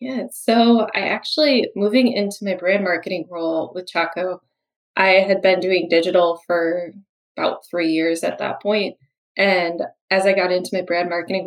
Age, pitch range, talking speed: 20-39, 170-210 Hz, 165 wpm